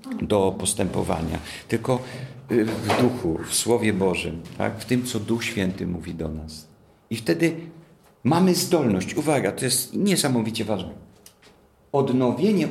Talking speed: 125 wpm